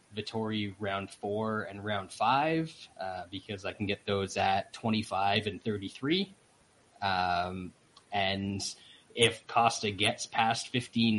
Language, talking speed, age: English, 125 wpm, 20-39